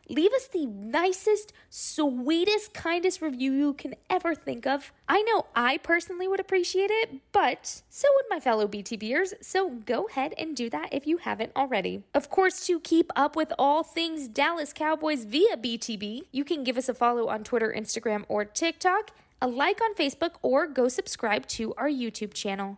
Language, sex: English, female